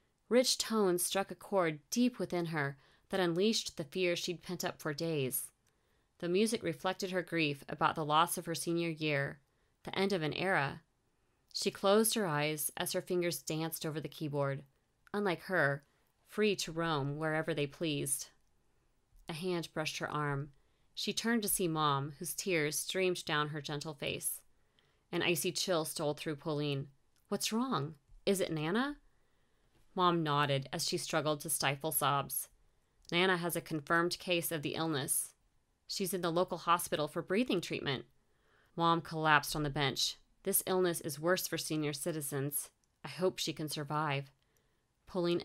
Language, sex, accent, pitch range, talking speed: English, female, American, 150-180 Hz, 165 wpm